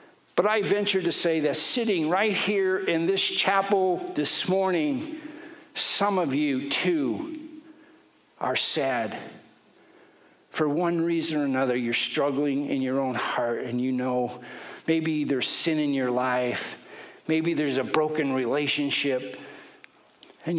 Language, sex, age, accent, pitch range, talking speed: English, male, 60-79, American, 130-190 Hz, 135 wpm